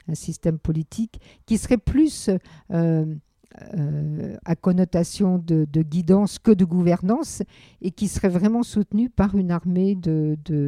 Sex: female